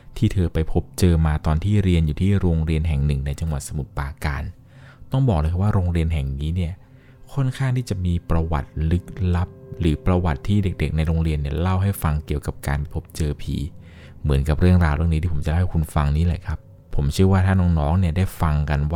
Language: Thai